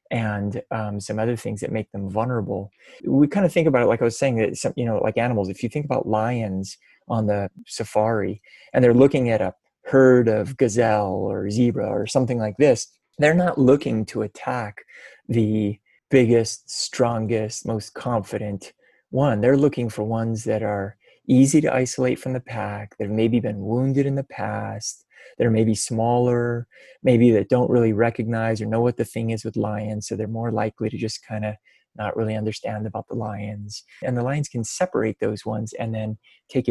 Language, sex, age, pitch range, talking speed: English, male, 20-39, 110-125 Hz, 195 wpm